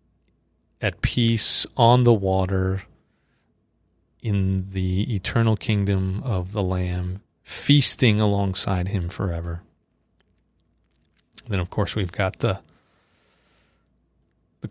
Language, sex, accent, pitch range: English, male, American, 95-110 Hz